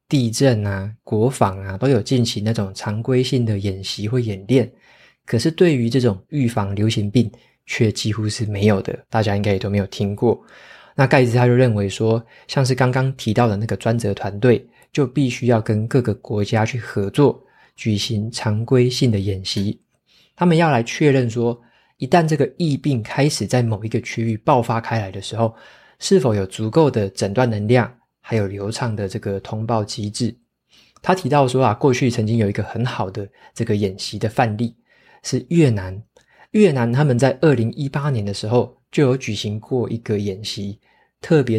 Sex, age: male, 20-39